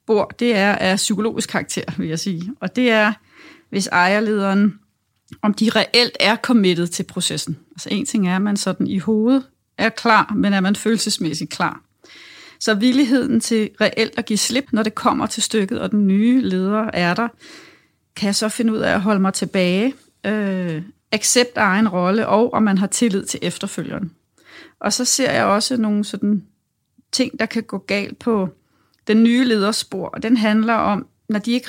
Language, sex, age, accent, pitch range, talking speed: Danish, female, 30-49, native, 190-225 Hz, 180 wpm